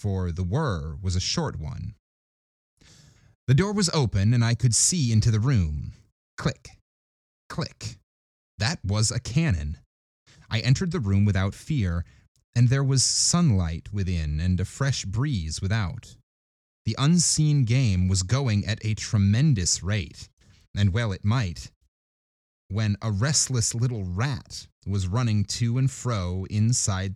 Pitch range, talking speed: 95-125 Hz, 140 wpm